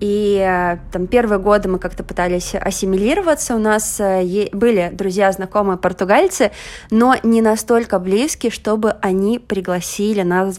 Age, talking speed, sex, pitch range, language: 20-39, 125 wpm, female, 190-235 Hz, Russian